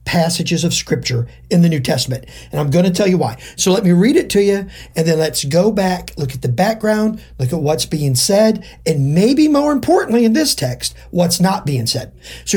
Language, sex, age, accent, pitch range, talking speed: English, male, 50-69, American, 150-220 Hz, 225 wpm